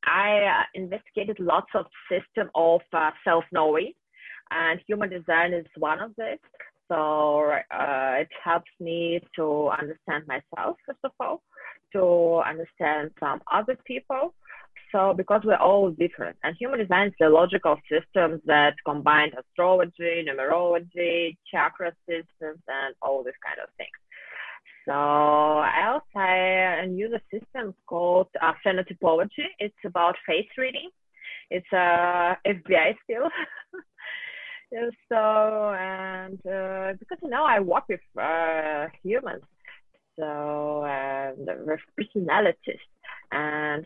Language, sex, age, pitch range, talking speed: English, female, 20-39, 150-200 Hz, 125 wpm